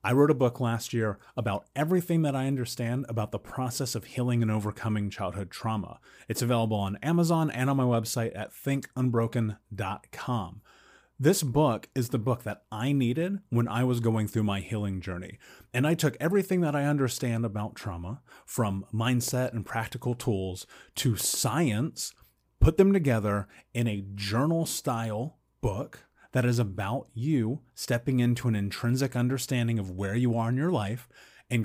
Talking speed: 165 wpm